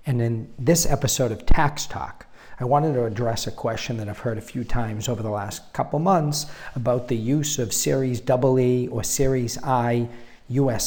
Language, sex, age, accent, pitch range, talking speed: English, male, 50-69, American, 110-130 Hz, 190 wpm